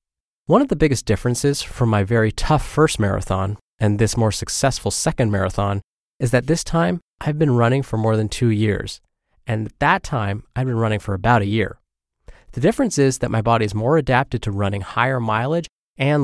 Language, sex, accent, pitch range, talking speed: English, male, American, 100-130 Hz, 200 wpm